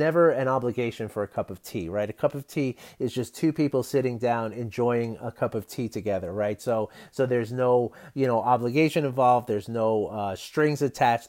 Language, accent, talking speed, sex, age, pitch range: English, American, 205 wpm, male, 30-49, 110-145 Hz